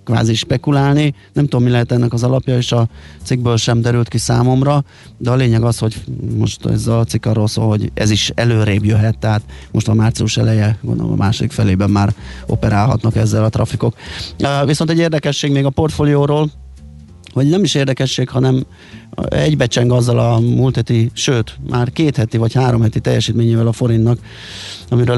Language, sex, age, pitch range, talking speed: Hungarian, male, 30-49, 115-130 Hz, 175 wpm